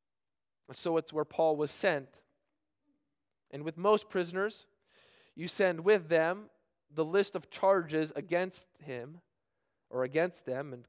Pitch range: 155-215 Hz